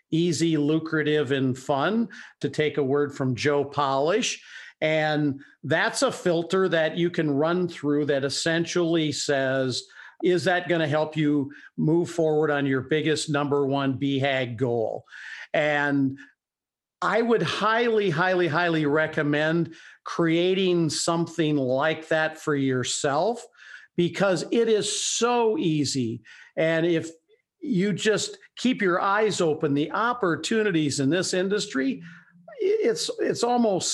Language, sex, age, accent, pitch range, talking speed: English, male, 50-69, American, 145-185 Hz, 125 wpm